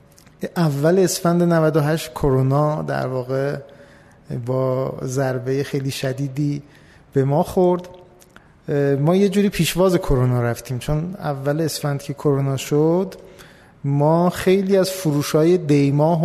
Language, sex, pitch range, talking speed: Persian, male, 135-160 Hz, 115 wpm